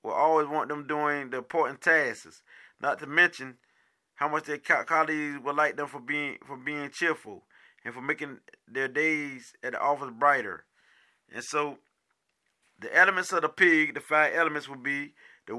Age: 20-39